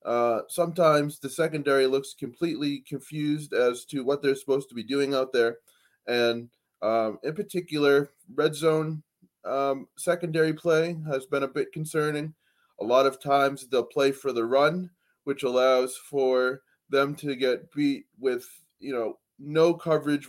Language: English